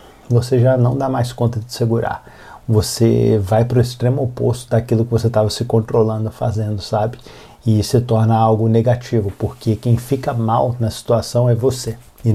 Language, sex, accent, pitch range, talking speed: Portuguese, male, Brazilian, 110-120 Hz, 175 wpm